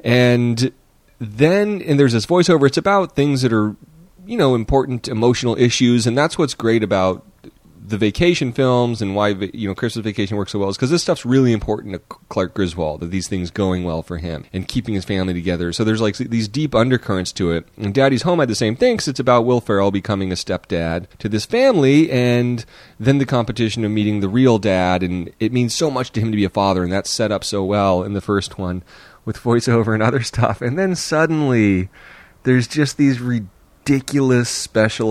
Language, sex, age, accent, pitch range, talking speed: English, male, 30-49, American, 95-130 Hz, 210 wpm